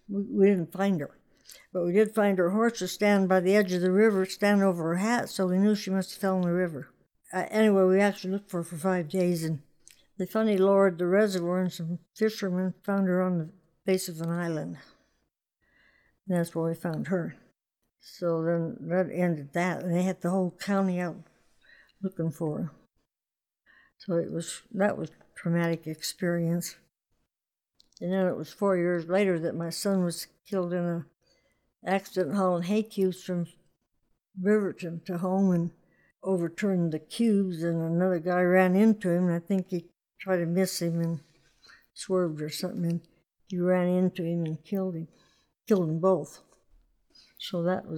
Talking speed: 180 wpm